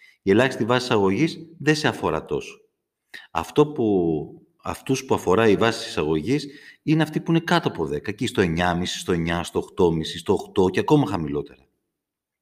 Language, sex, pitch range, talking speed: Greek, male, 95-150 Hz, 165 wpm